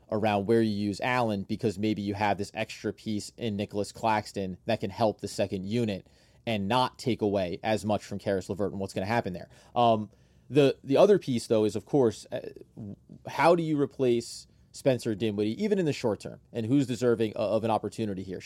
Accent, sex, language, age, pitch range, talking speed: American, male, English, 30-49, 105-130 Hz, 205 wpm